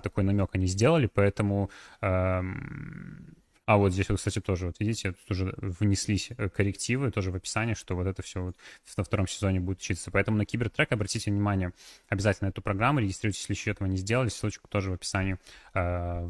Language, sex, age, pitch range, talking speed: Russian, male, 20-39, 95-125 Hz, 180 wpm